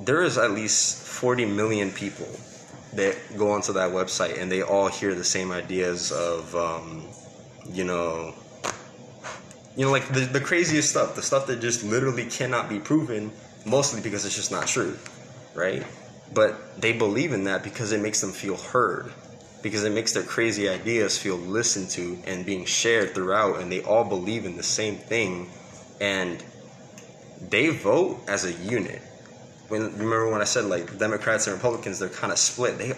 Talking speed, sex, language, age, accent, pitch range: 175 wpm, male, English, 20-39, American, 95-120 Hz